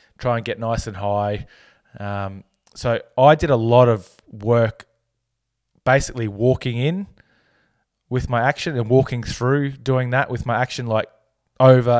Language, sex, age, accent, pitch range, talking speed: English, male, 20-39, Australian, 110-125 Hz, 150 wpm